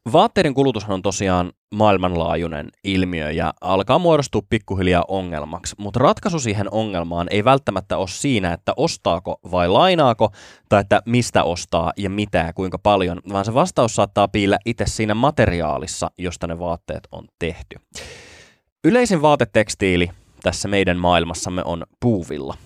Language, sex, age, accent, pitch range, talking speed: Finnish, male, 20-39, native, 90-120 Hz, 135 wpm